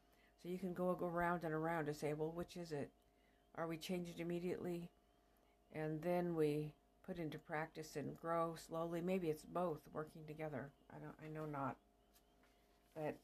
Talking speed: 170 wpm